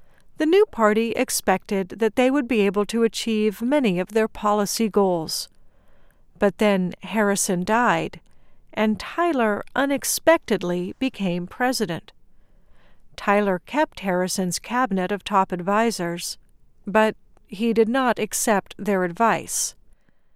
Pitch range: 195-245 Hz